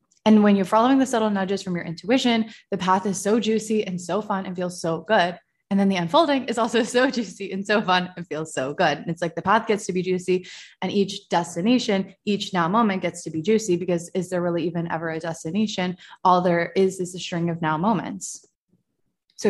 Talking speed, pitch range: 230 wpm, 175-220 Hz